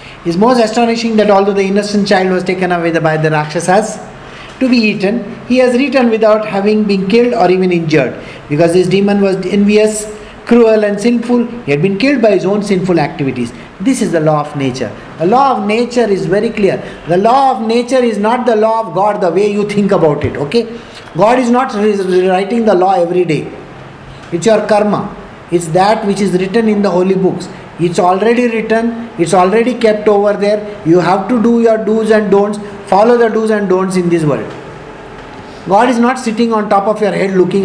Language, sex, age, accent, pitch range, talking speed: English, male, 50-69, Indian, 180-230 Hz, 205 wpm